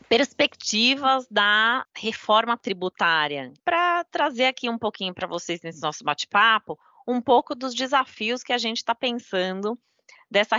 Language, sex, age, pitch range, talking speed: Portuguese, female, 20-39, 185-240 Hz, 135 wpm